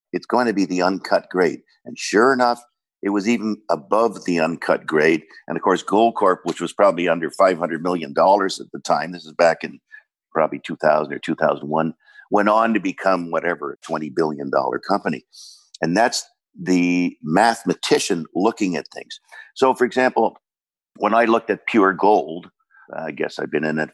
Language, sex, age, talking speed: English, male, 50-69, 175 wpm